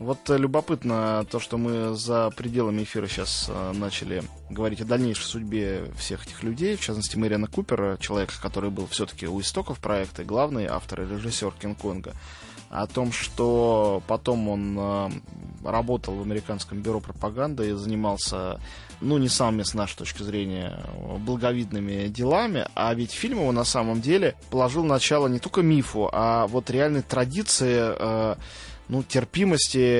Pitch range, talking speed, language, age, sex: 105-130 Hz, 150 wpm, Russian, 20-39, male